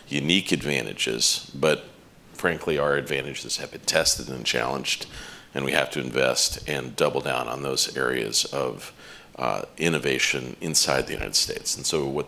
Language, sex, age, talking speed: English, male, 50-69, 155 wpm